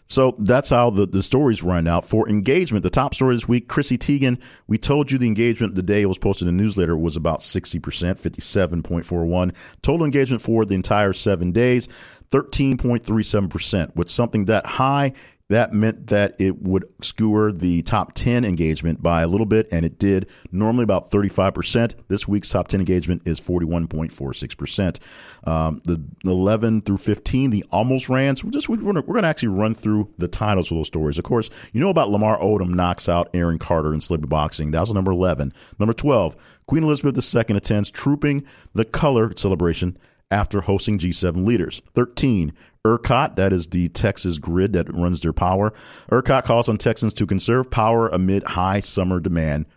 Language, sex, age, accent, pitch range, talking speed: English, male, 40-59, American, 90-115 Hz, 185 wpm